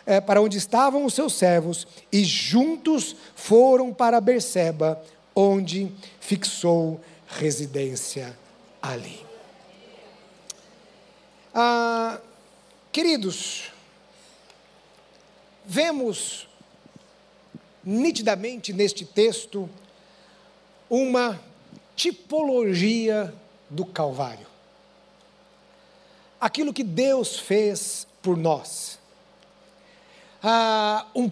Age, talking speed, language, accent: 60-79, 60 wpm, Portuguese, Brazilian